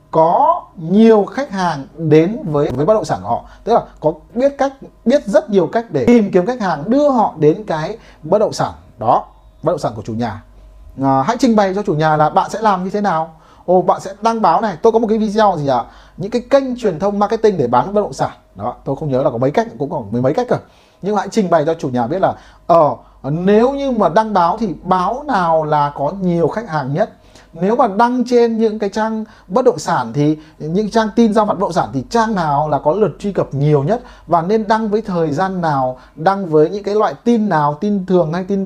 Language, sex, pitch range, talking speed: Vietnamese, male, 155-220 Hz, 255 wpm